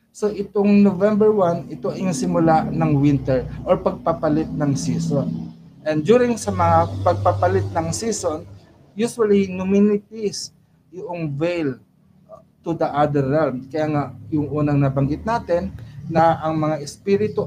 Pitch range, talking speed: 135-180 Hz, 130 wpm